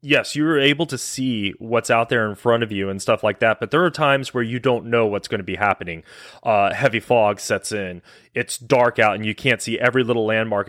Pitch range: 105-135 Hz